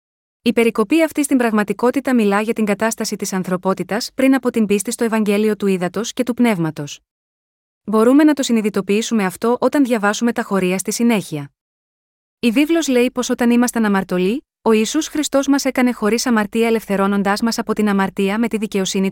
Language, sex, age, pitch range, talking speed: Greek, female, 20-39, 205-245 Hz, 175 wpm